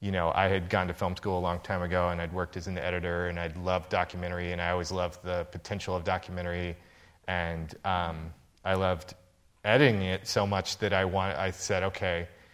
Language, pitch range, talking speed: English, 90-105 Hz, 210 wpm